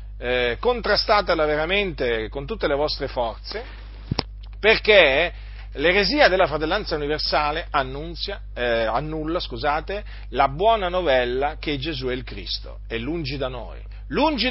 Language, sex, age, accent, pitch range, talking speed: Italian, male, 40-59, native, 100-150 Hz, 125 wpm